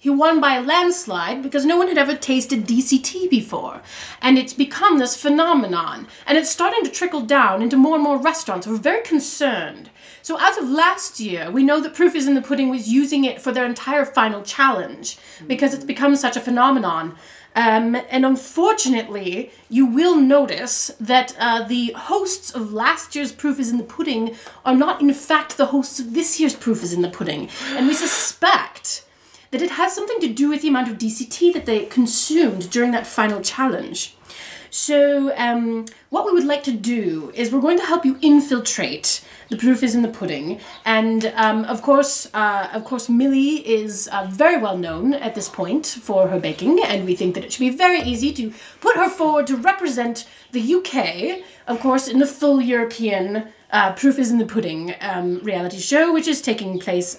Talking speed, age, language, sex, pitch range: 195 wpm, 30-49, English, female, 225-295 Hz